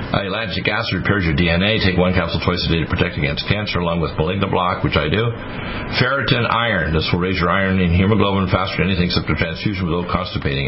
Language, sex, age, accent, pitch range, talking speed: English, male, 60-79, American, 90-110 Hz, 225 wpm